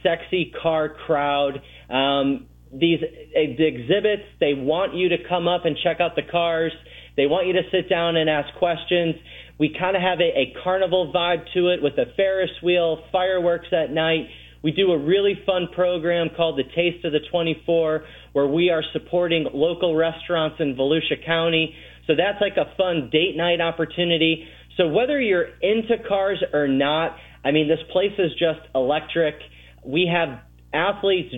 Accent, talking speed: American, 170 wpm